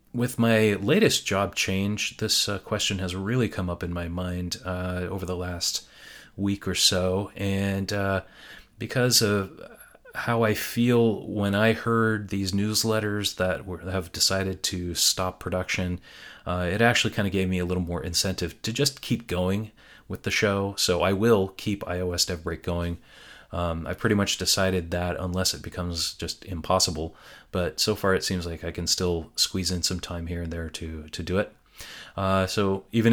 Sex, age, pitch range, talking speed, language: male, 30-49, 90-105 Hz, 185 wpm, English